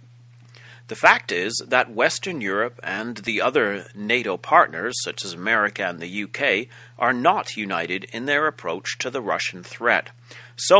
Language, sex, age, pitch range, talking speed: English, male, 40-59, 110-130 Hz, 155 wpm